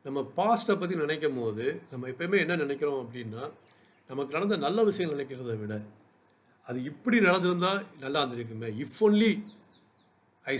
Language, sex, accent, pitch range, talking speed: Tamil, male, native, 130-185 Hz, 135 wpm